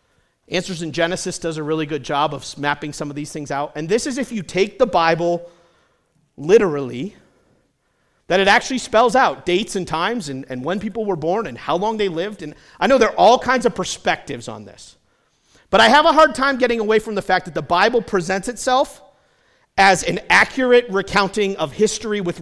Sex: male